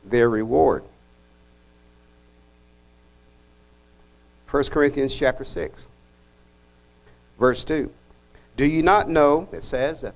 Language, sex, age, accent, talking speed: English, male, 60-79, American, 90 wpm